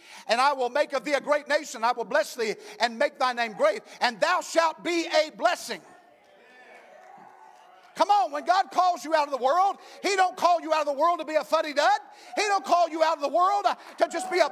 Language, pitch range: English, 275-370 Hz